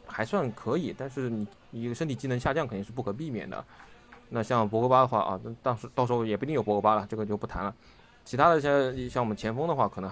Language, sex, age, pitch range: Chinese, male, 20-39, 105-125 Hz